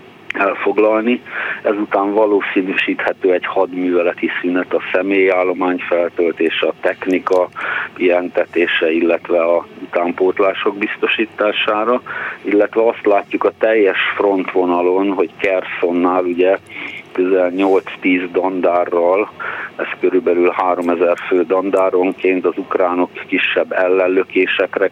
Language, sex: Hungarian, male